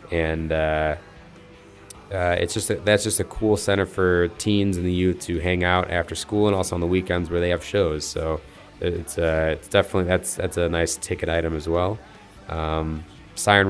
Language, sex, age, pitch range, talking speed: English, male, 20-39, 85-100 Hz, 195 wpm